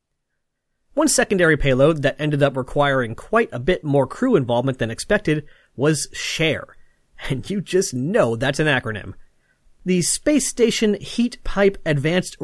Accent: American